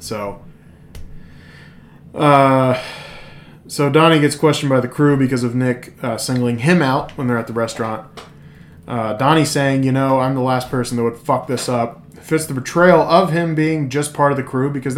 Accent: American